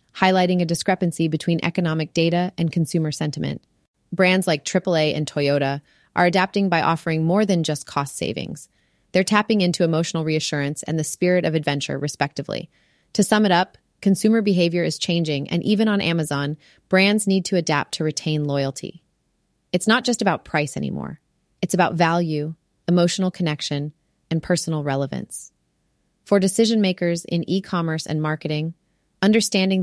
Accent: American